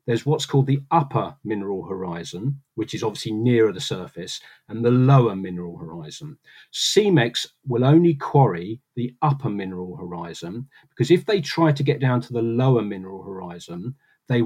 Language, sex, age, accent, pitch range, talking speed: English, male, 40-59, British, 115-150 Hz, 160 wpm